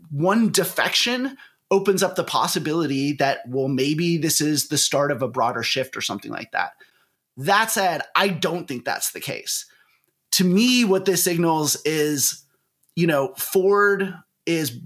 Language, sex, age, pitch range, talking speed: English, male, 30-49, 135-180 Hz, 160 wpm